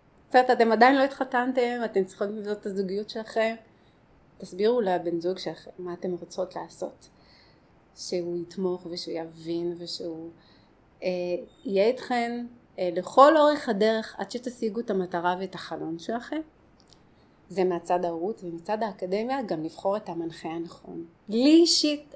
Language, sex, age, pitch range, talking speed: Hebrew, female, 30-49, 180-225 Hz, 135 wpm